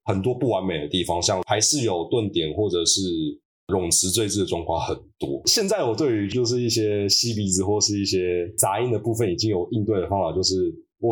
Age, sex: 20-39, male